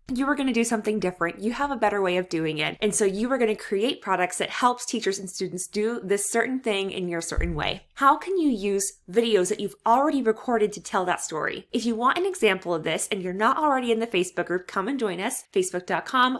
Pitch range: 185-245 Hz